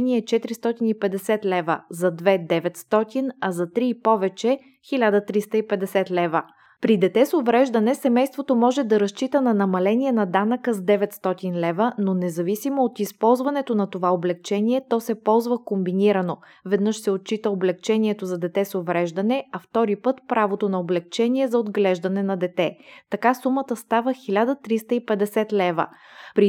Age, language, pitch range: 20-39, Bulgarian, 190-240 Hz